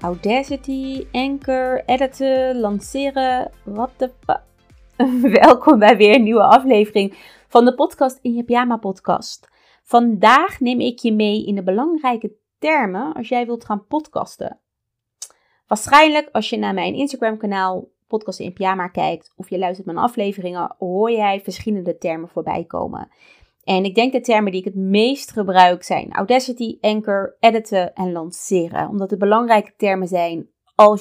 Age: 30-49